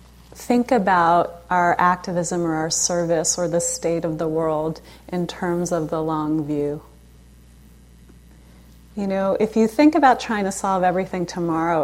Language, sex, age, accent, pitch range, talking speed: English, female, 30-49, American, 160-200 Hz, 150 wpm